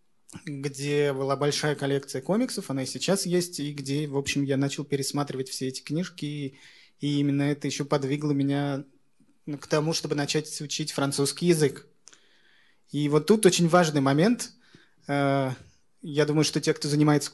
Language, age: Russian, 20-39